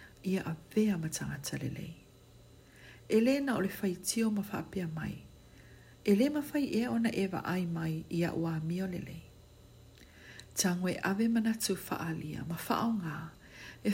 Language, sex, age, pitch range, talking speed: English, female, 60-79, 160-220 Hz, 130 wpm